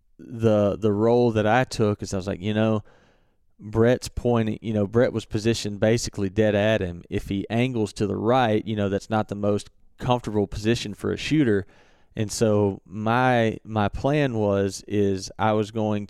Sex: male